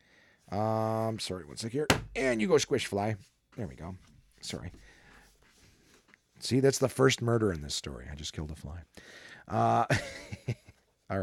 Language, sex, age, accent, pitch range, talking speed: English, male, 30-49, American, 85-115 Hz, 155 wpm